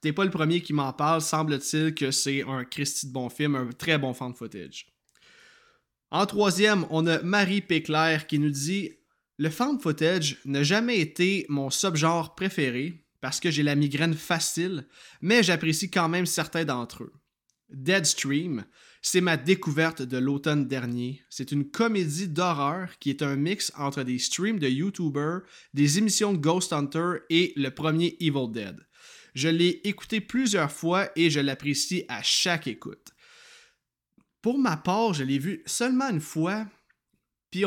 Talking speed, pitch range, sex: 165 wpm, 140-185 Hz, male